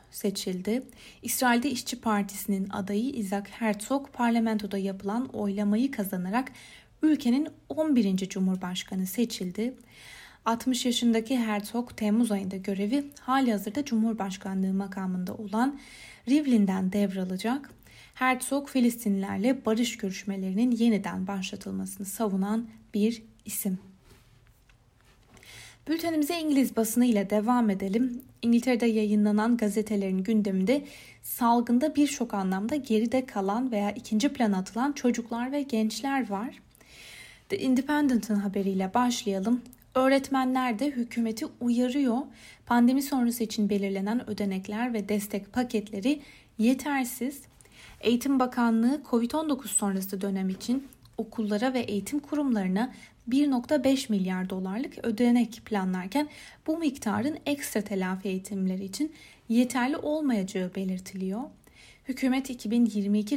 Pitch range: 200-255 Hz